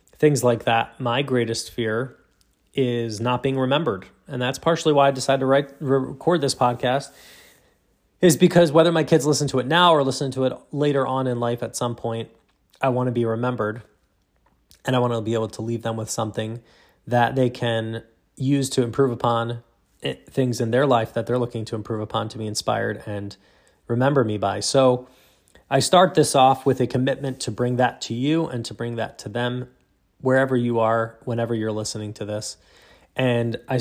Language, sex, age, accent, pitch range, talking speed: English, male, 20-39, American, 115-140 Hz, 195 wpm